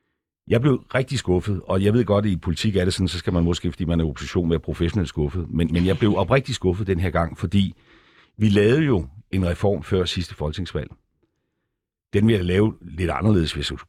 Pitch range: 85-105 Hz